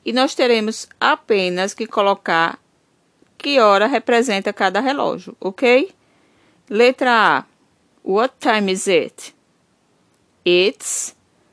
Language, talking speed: Portuguese, 100 wpm